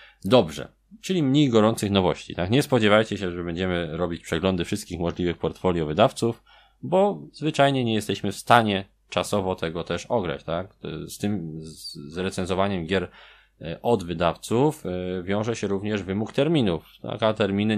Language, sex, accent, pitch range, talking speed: Polish, male, native, 80-110 Hz, 140 wpm